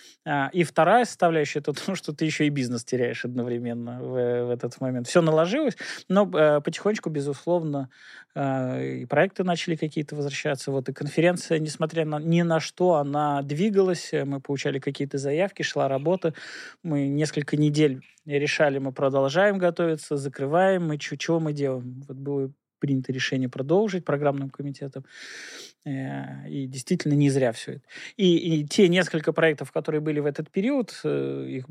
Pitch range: 135-160 Hz